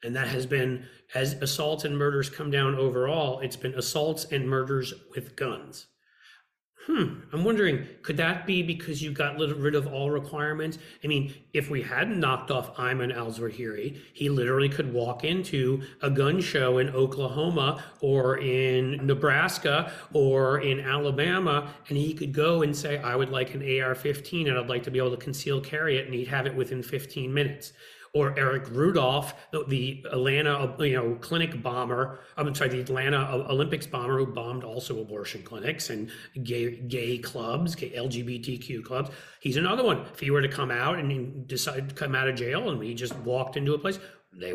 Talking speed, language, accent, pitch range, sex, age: 180 wpm, English, American, 130-155 Hz, male, 40-59